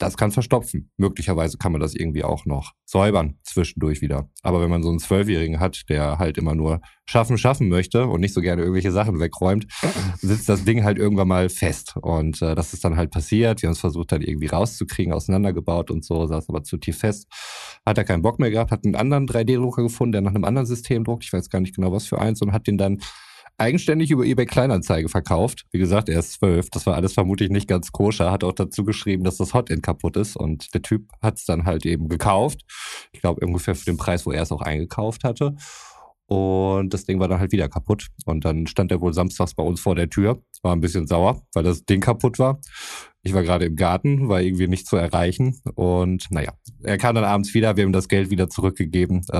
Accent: German